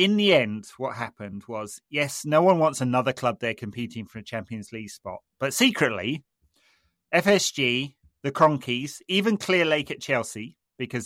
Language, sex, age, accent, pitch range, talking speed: English, male, 30-49, British, 115-140 Hz, 165 wpm